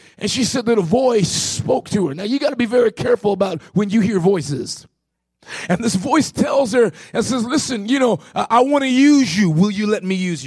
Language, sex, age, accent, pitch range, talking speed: English, male, 30-49, American, 205-270 Hz, 235 wpm